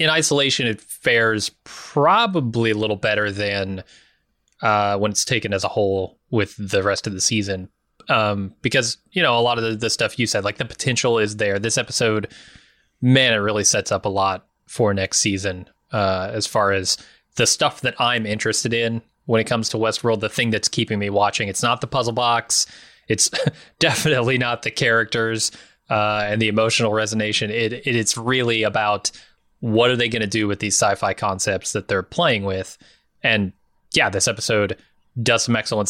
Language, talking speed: English, 185 wpm